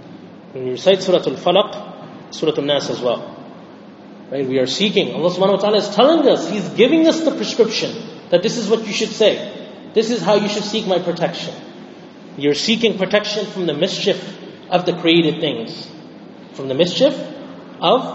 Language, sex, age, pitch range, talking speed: English, male, 30-49, 175-220 Hz, 180 wpm